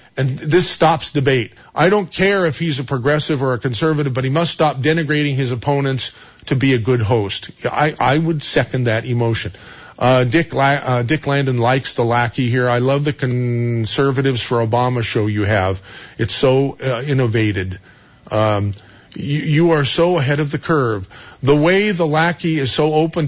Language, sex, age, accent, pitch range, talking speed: English, male, 50-69, American, 120-155 Hz, 185 wpm